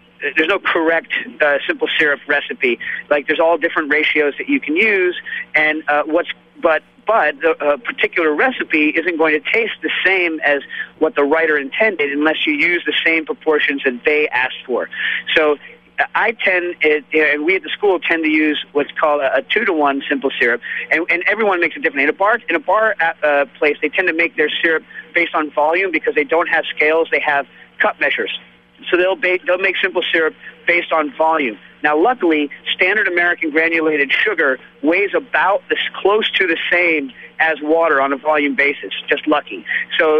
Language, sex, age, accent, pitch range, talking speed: English, male, 40-59, American, 150-175 Hz, 205 wpm